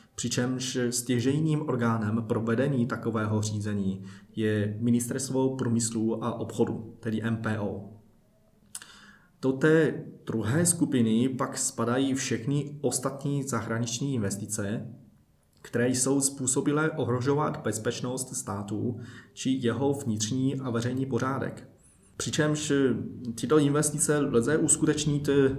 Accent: native